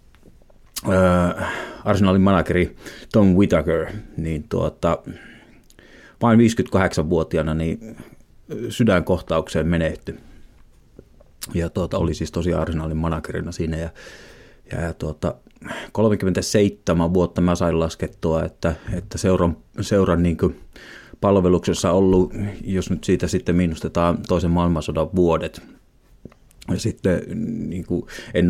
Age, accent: 30-49, native